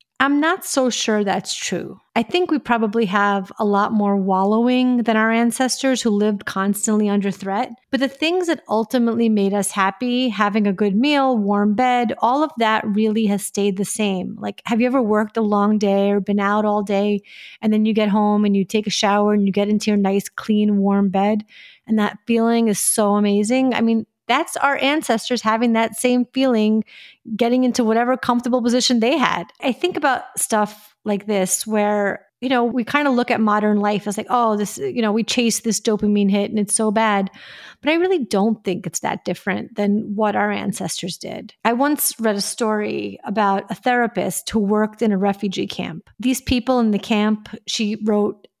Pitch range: 205-245 Hz